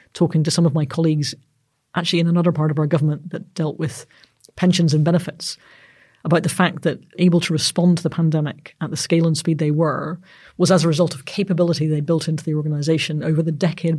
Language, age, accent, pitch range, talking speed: English, 40-59, British, 155-175 Hz, 215 wpm